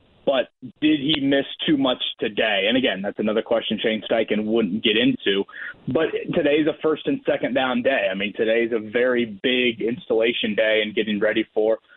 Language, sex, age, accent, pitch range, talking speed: English, male, 30-49, American, 115-150 Hz, 185 wpm